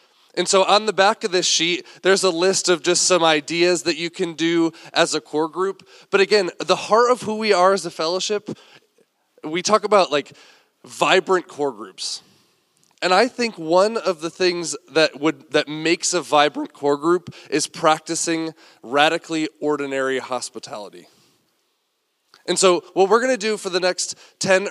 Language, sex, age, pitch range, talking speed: English, male, 20-39, 150-185 Hz, 175 wpm